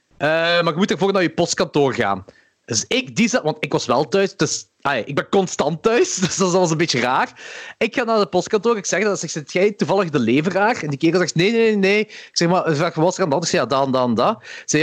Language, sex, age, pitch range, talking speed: Dutch, male, 30-49, 155-200 Hz, 280 wpm